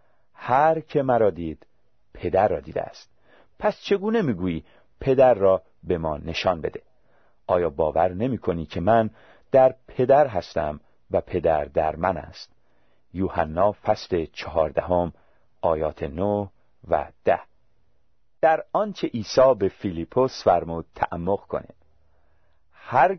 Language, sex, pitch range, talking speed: Persian, male, 90-130 Hz, 115 wpm